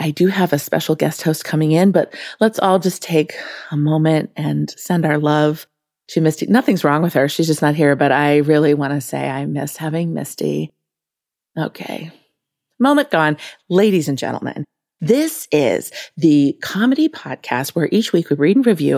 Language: English